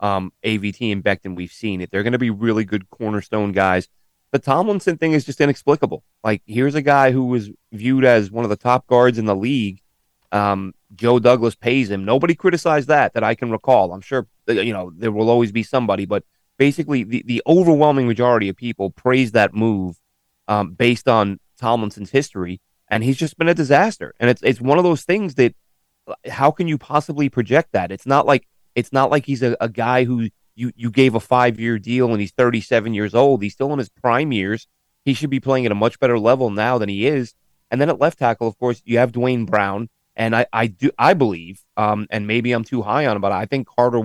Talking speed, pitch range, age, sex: 225 wpm, 105-130 Hz, 30-49, male